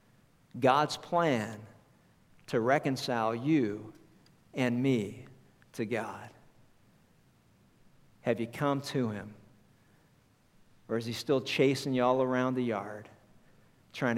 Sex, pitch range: male, 120-145 Hz